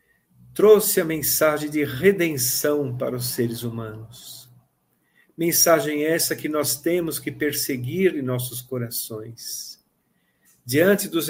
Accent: Brazilian